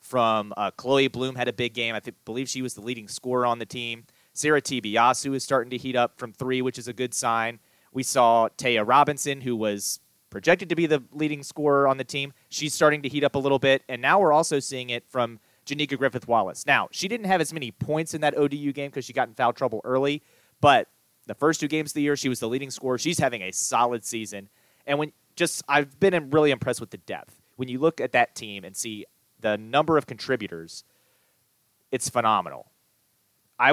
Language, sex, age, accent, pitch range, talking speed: English, male, 30-49, American, 125-150 Hz, 225 wpm